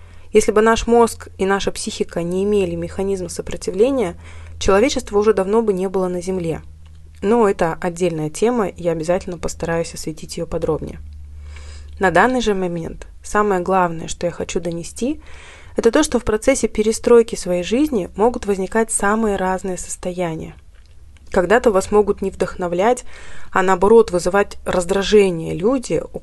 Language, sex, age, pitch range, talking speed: Russian, female, 20-39, 175-225 Hz, 145 wpm